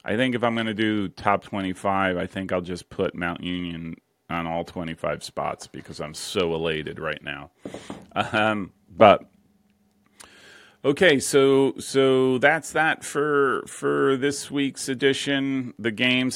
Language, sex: English, male